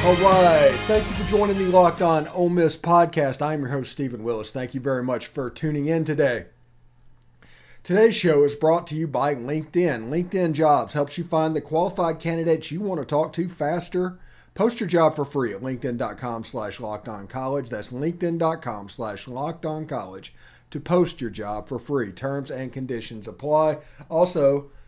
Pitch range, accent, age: 120-165 Hz, American, 40-59